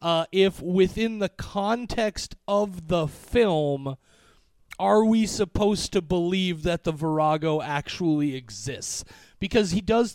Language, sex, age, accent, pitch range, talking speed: English, male, 30-49, American, 155-195 Hz, 125 wpm